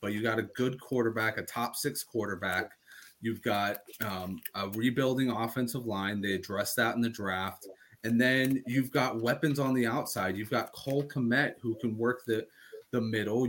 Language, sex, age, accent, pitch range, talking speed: English, male, 30-49, American, 110-140 Hz, 180 wpm